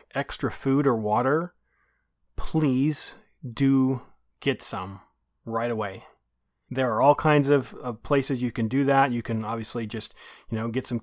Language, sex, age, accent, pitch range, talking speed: English, male, 30-49, American, 110-130 Hz, 160 wpm